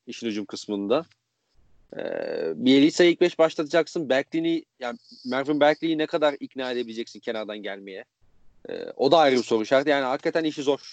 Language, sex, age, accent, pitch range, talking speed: Turkish, male, 30-49, native, 115-155 Hz, 160 wpm